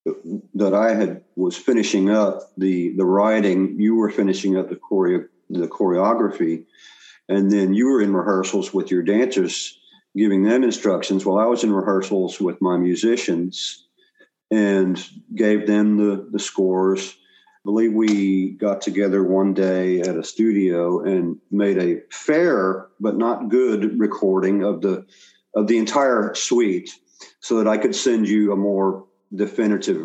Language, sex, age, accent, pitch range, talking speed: English, male, 50-69, American, 95-105 Hz, 150 wpm